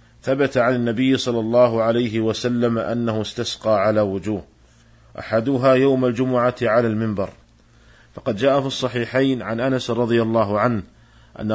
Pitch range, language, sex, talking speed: 110-125 Hz, Arabic, male, 135 wpm